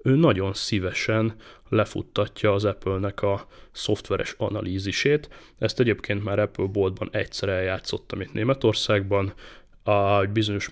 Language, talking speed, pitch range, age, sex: Hungarian, 110 wpm, 100-115 Hz, 30-49, male